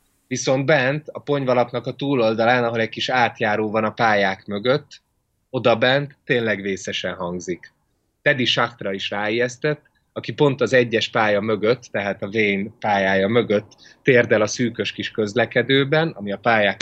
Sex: male